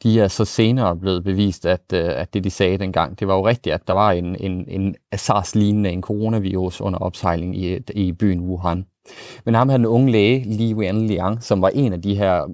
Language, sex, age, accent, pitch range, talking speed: Danish, male, 30-49, native, 95-115 Hz, 215 wpm